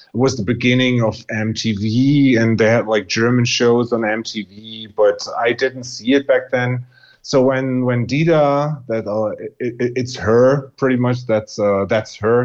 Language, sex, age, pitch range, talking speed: English, male, 30-49, 110-130 Hz, 180 wpm